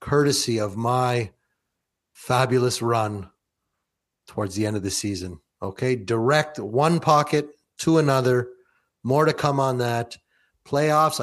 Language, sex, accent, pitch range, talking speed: English, male, American, 110-140 Hz, 125 wpm